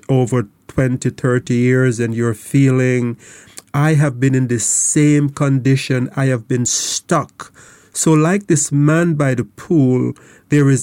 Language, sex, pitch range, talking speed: English, male, 115-135 Hz, 145 wpm